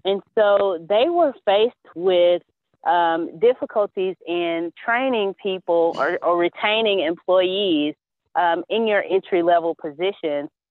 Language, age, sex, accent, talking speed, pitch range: English, 30-49, female, American, 110 wpm, 165-205 Hz